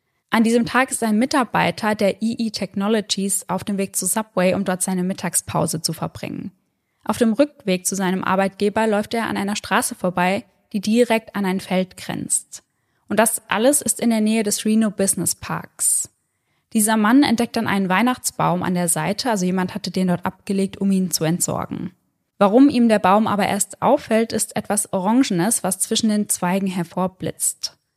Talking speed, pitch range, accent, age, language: 180 wpm, 190-225 Hz, German, 10-29, German